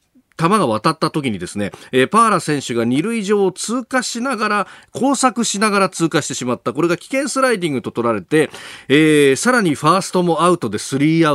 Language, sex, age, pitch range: Japanese, male, 40-59, 110-180 Hz